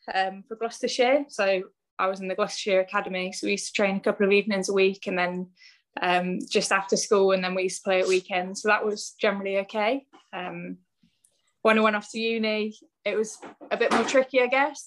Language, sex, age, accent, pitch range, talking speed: English, female, 10-29, British, 190-225 Hz, 220 wpm